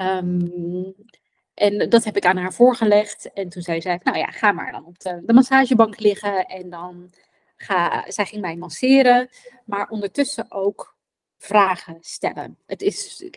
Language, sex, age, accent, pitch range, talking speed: Dutch, female, 20-39, Dutch, 185-225 Hz, 150 wpm